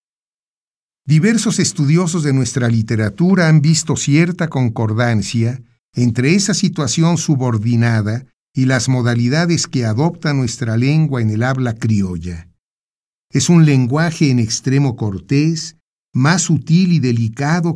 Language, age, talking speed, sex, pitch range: Spanish, 50-69, 115 wpm, male, 115-155 Hz